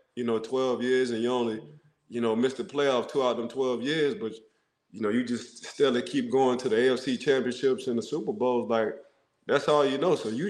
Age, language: 20-39, English